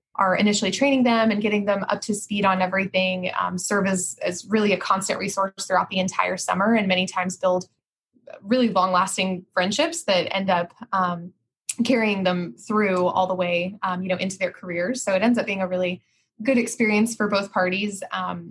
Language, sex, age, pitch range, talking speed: English, female, 20-39, 185-225 Hz, 195 wpm